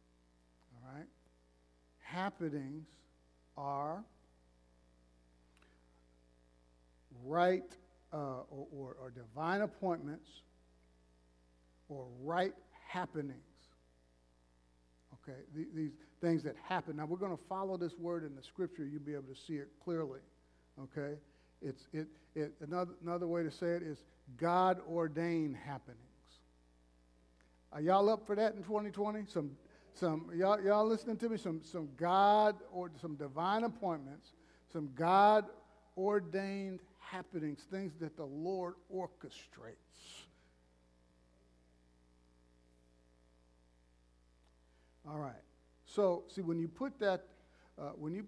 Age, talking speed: 50-69, 110 wpm